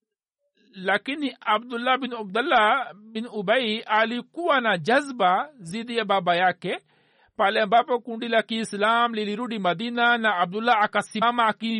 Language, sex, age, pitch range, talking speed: Swahili, male, 50-69, 215-250 Hz, 120 wpm